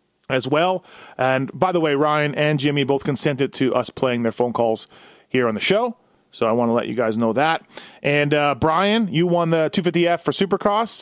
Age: 30-49